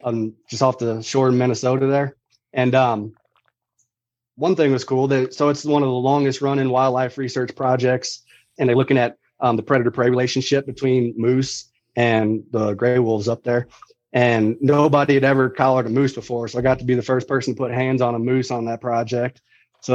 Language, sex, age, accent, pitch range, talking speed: English, male, 30-49, American, 120-135 Hz, 205 wpm